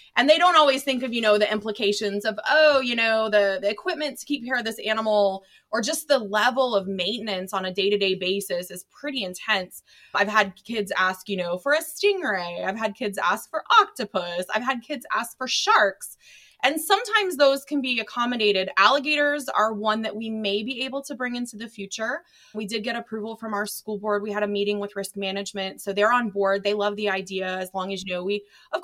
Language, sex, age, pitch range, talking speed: English, female, 20-39, 190-235 Hz, 220 wpm